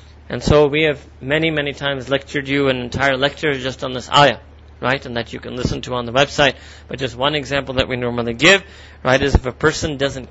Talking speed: 235 wpm